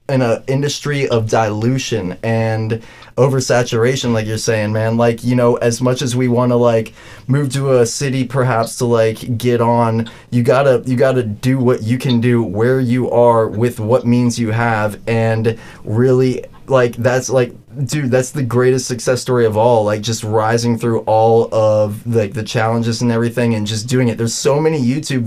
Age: 20-39